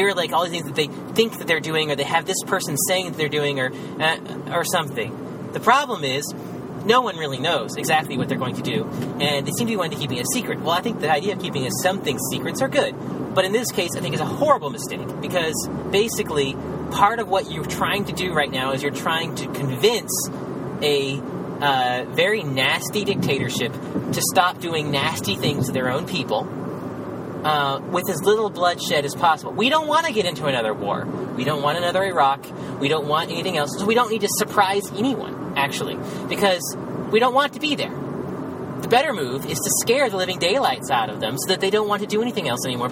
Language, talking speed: English, 225 wpm